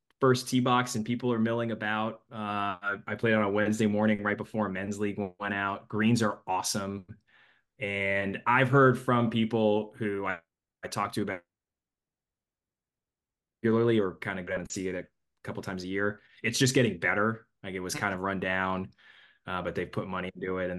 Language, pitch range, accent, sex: English, 95-115 Hz, American, male